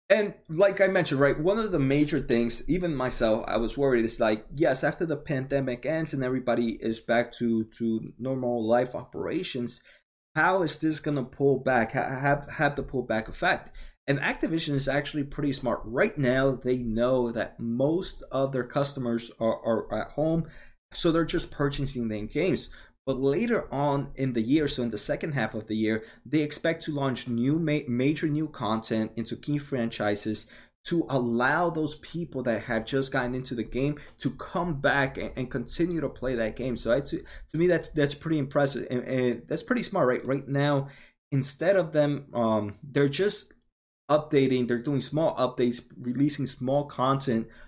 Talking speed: 185 wpm